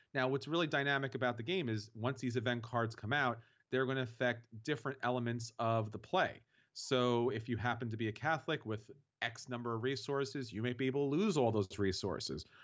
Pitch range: 120-160 Hz